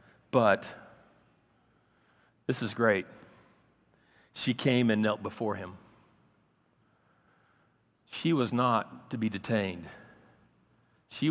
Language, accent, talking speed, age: English, American, 90 wpm, 50-69